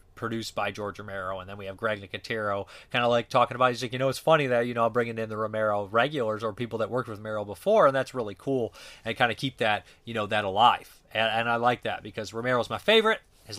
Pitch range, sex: 100-115 Hz, male